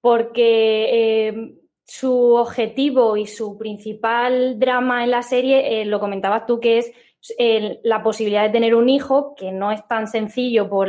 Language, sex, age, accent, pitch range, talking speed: Spanish, female, 20-39, Spanish, 225-260 Hz, 165 wpm